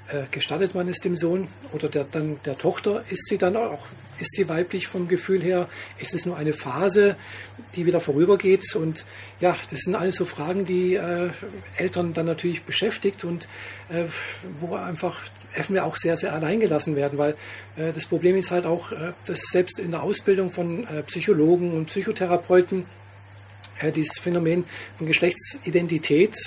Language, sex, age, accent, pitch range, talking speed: German, male, 40-59, German, 150-180 Hz, 155 wpm